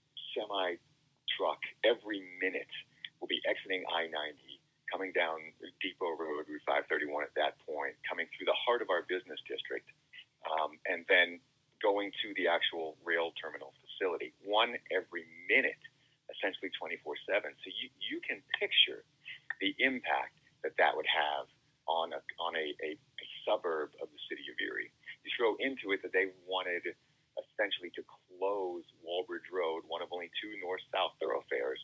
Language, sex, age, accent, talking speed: English, male, 40-59, American, 150 wpm